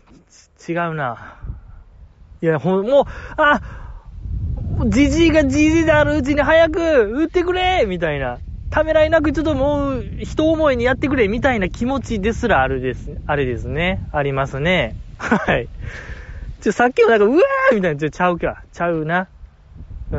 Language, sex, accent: Japanese, male, native